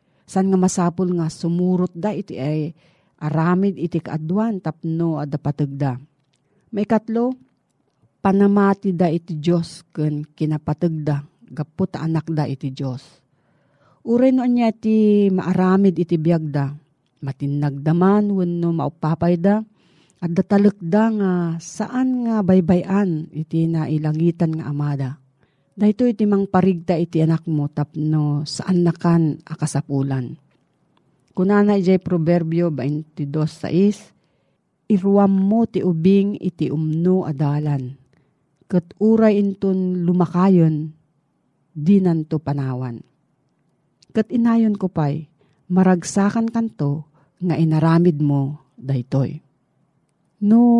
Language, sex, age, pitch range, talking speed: Filipino, female, 40-59, 150-195 Hz, 105 wpm